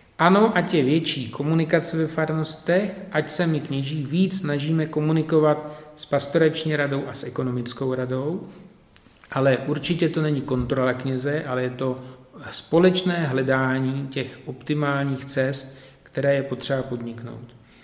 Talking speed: 130 wpm